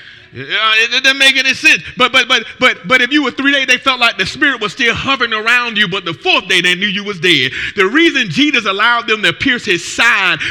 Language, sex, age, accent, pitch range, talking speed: English, male, 30-49, American, 190-265 Hz, 255 wpm